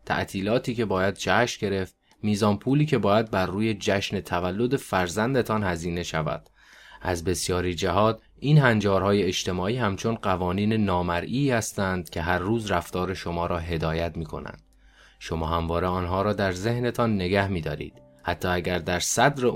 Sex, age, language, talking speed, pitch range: male, 20-39, Persian, 145 wpm, 85-110 Hz